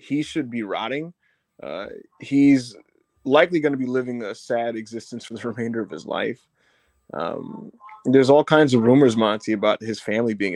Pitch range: 110-130 Hz